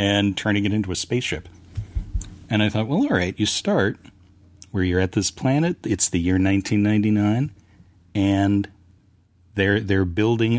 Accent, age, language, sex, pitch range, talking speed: American, 40-59, English, male, 95-110 Hz, 155 wpm